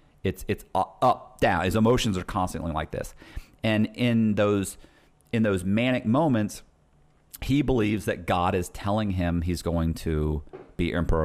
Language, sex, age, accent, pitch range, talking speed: English, male, 40-59, American, 90-120 Hz, 160 wpm